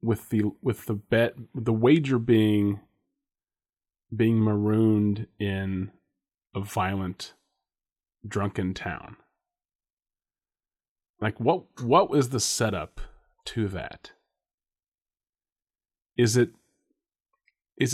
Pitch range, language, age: 100-120 Hz, English, 30-49